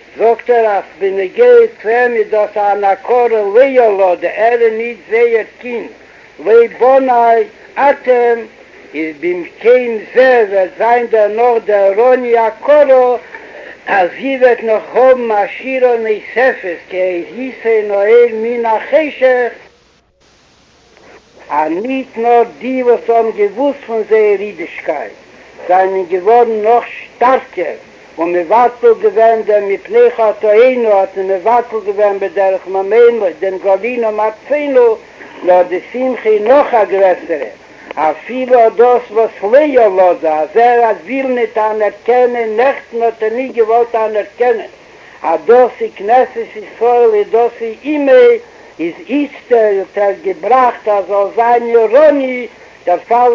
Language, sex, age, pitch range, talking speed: Hebrew, male, 60-79, 210-255 Hz, 90 wpm